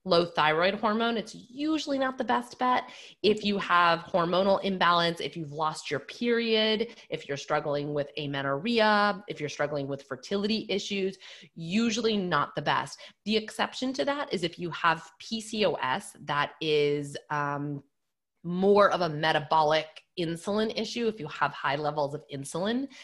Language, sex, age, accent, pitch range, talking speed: English, female, 30-49, American, 145-205 Hz, 155 wpm